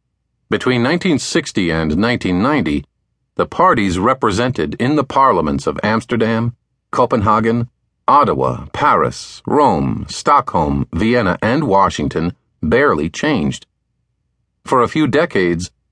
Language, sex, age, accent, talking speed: English, male, 50-69, American, 100 wpm